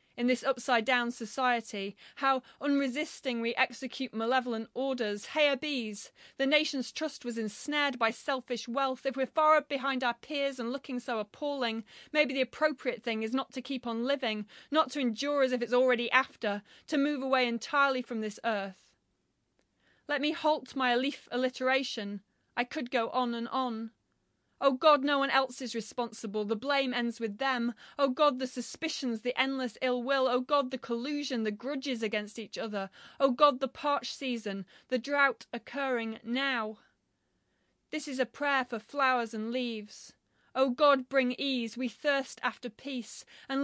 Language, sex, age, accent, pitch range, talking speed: English, female, 30-49, British, 235-275 Hz, 165 wpm